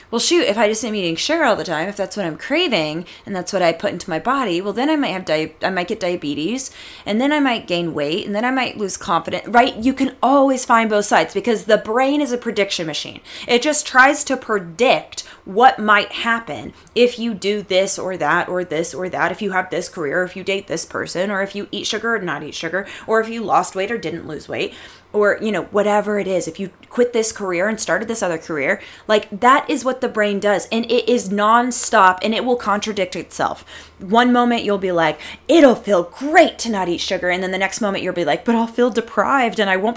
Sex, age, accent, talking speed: female, 20-39, American, 250 wpm